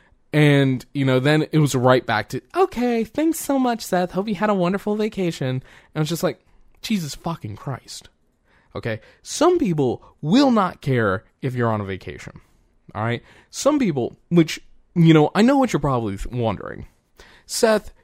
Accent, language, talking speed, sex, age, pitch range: American, English, 175 wpm, male, 20-39, 110-150 Hz